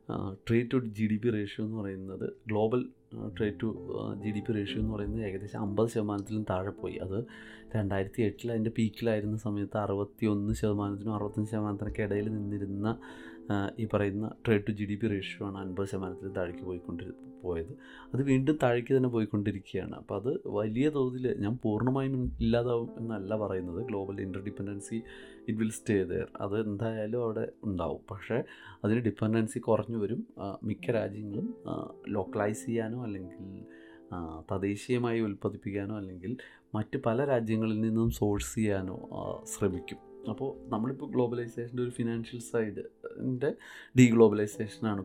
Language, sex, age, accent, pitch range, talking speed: Malayalam, male, 30-49, native, 100-120 Hz, 125 wpm